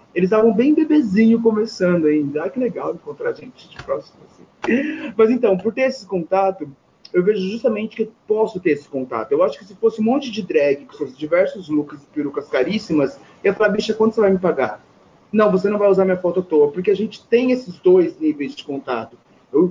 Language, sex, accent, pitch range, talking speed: Portuguese, male, Brazilian, 160-225 Hz, 220 wpm